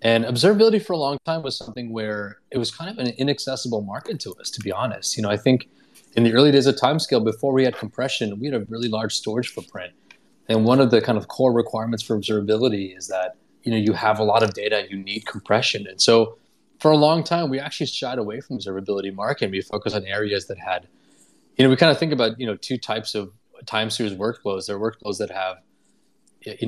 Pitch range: 105-125 Hz